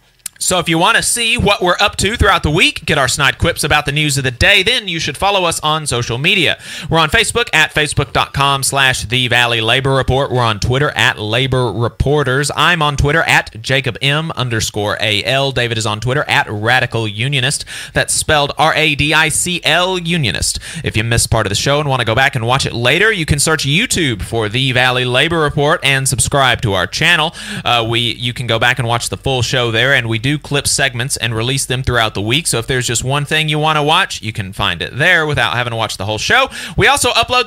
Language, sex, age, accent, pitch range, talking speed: English, male, 30-49, American, 120-155 Hz, 230 wpm